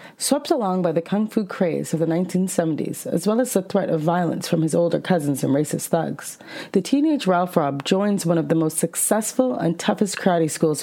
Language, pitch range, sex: English, 165-205 Hz, female